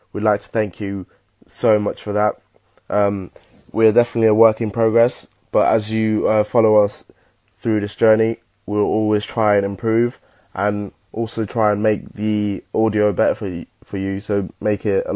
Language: English